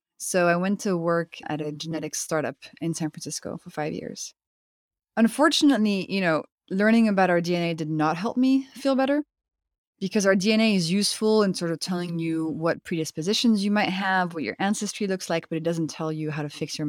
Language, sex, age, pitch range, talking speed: English, female, 20-39, 155-195 Hz, 205 wpm